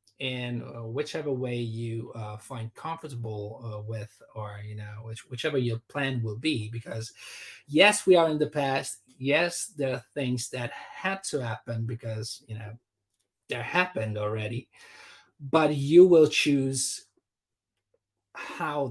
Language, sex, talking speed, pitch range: English, male, 140 wpm, 115-150 Hz